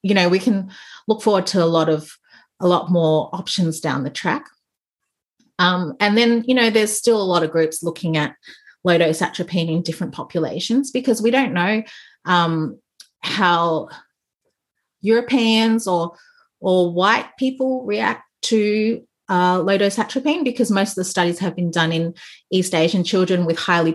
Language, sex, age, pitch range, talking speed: English, female, 30-49, 165-205 Hz, 160 wpm